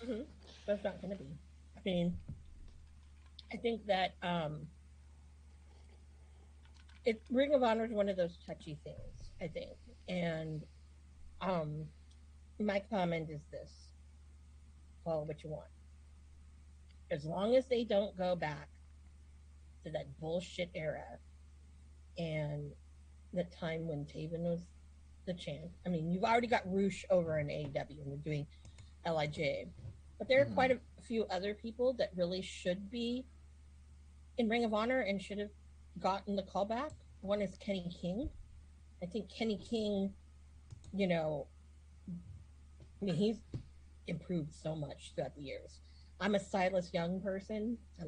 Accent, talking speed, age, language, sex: American, 140 wpm, 40-59, English, female